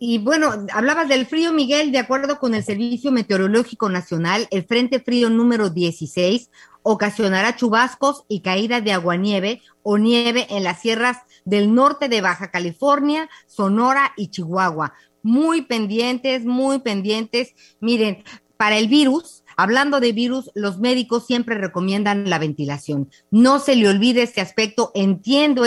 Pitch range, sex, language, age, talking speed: 200-250 Hz, female, Spanish, 40-59, 145 wpm